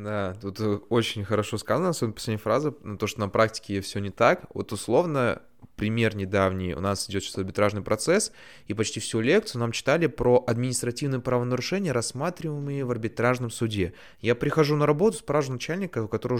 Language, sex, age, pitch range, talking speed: Russian, male, 20-39, 105-135 Hz, 170 wpm